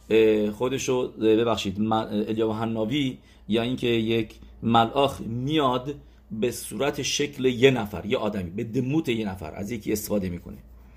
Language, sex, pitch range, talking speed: English, male, 105-135 Hz, 130 wpm